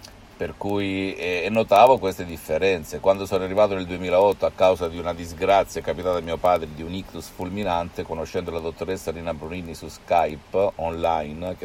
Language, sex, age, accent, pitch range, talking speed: Italian, male, 50-69, native, 80-100 Hz, 170 wpm